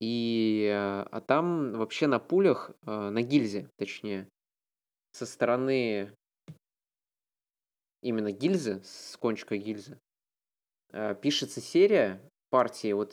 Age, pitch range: 20-39, 110-135 Hz